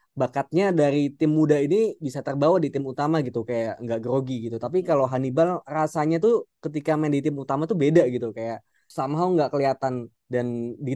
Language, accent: Indonesian, native